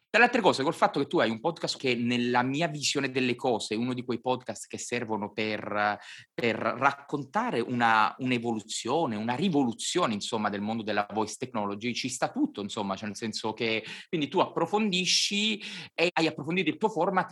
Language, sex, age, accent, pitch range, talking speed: Italian, male, 30-49, native, 110-175 Hz, 185 wpm